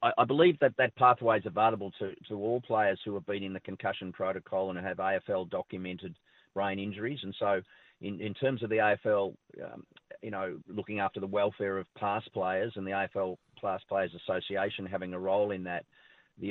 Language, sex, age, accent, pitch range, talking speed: English, male, 40-59, Australian, 95-105 Hz, 195 wpm